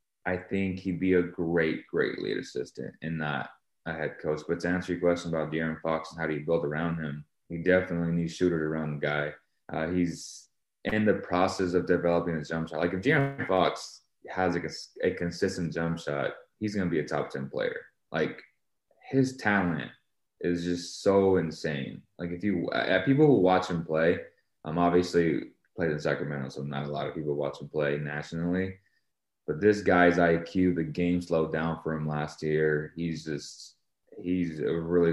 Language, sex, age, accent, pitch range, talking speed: English, male, 20-39, American, 75-90 Hz, 190 wpm